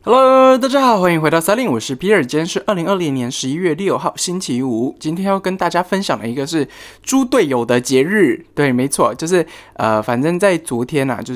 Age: 20-39